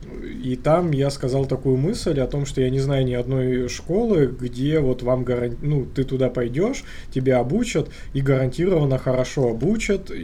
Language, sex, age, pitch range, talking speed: Russian, male, 20-39, 120-140 Hz, 170 wpm